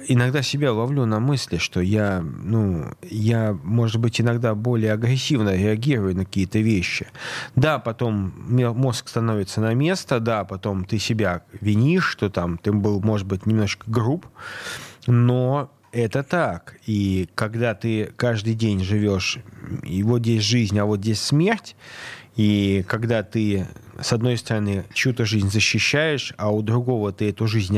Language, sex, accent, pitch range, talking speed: Russian, male, native, 105-125 Hz, 150 wpm